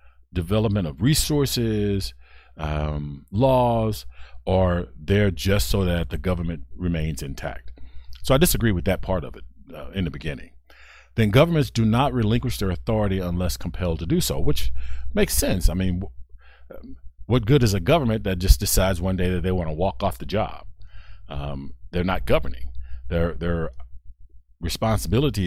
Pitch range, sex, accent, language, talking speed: 65-100 Hz, male, American, English, 160 wpm